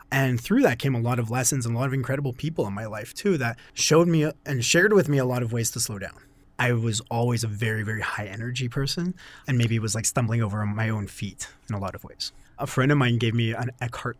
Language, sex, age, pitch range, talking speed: English, male, 30-49, 110-135 Hz, 270 wpm